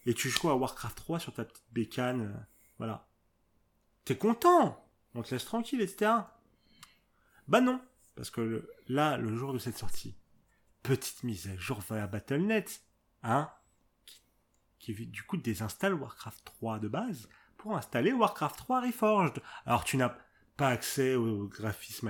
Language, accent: French, French